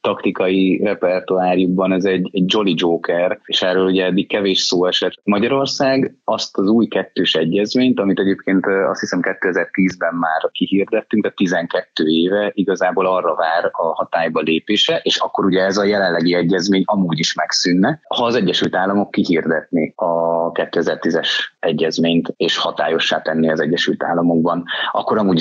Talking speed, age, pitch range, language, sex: 145 wpm, 30-49, 85-100 Hz, Hungarian, male